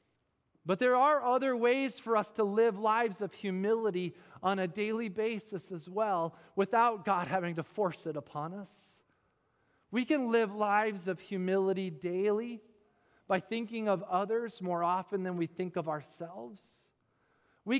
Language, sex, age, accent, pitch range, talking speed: English, male, 40-59, American, 155-210 Hz, 150 wpm